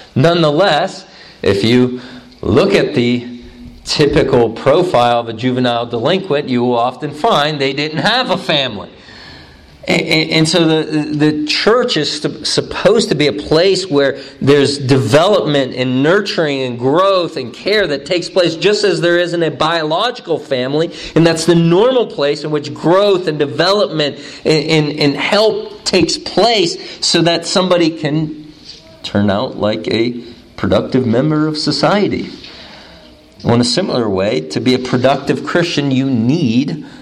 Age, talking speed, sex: 40-59, 145 wpm, male